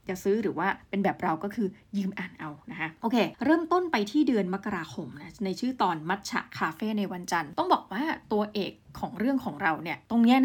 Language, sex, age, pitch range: Thai, female, 20-39, 190-235 Hz